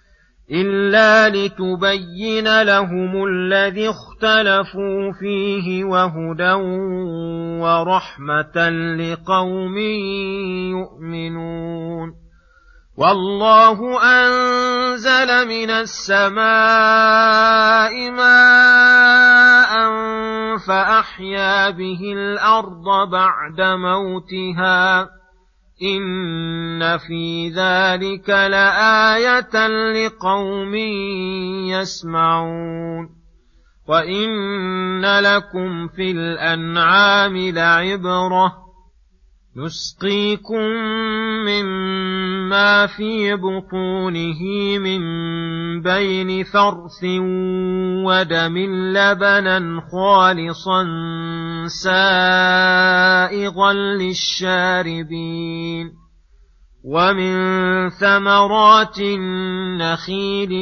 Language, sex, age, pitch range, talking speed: Arabic, male, 40-59, 180-200 Hz, 45 wpm